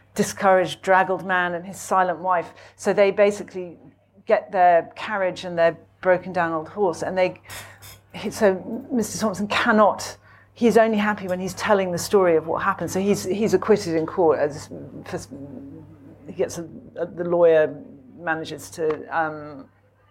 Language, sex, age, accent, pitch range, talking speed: English, female, 40-59, British, 155-190 Hz, 150 wpm